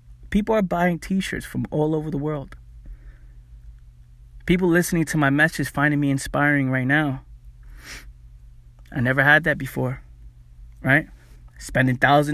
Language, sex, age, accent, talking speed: English, male, 20-39, American, 125 wpm